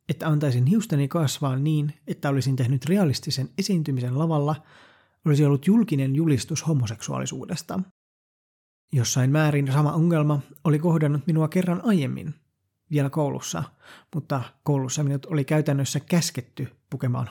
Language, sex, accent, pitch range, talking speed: Finnish, male, native, 135-165 Hz, 120 wpm